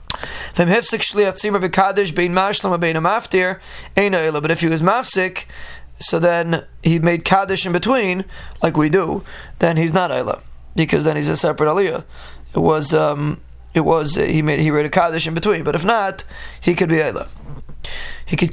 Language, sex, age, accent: English, male, 20-39, American